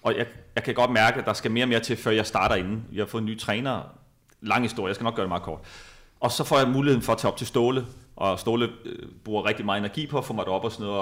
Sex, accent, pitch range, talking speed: male, native, 110-145 Hz, 310 wpm